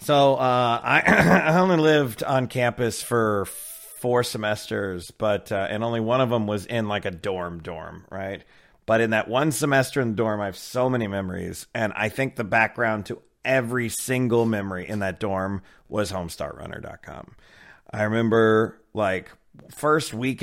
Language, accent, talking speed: English, American, 165 wpm